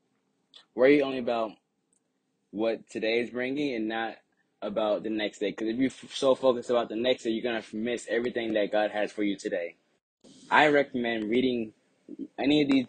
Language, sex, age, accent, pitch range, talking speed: English, male, 10-29, American, 110-125 Hz, 175 wpm